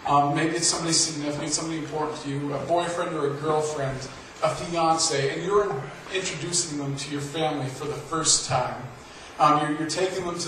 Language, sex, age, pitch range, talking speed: English, male, 40-59, 145-170 Hz, 190 wpm